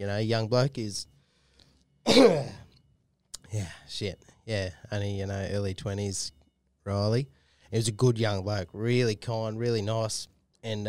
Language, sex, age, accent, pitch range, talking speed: English, male, 20-39, Australian, 100-120 Hz, 140 wpm